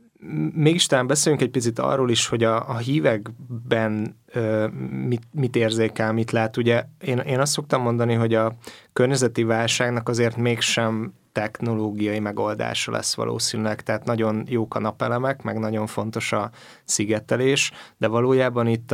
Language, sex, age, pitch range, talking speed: Hungarian, male, 20-39, 110-120 Hz, 145 wpm